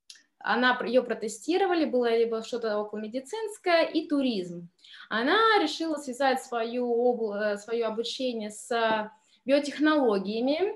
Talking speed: 95 wpm